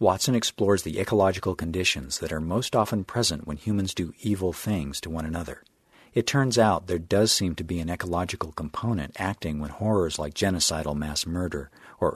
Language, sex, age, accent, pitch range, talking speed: English, male, 50-69, American, 80-105 Hz, 185 wpm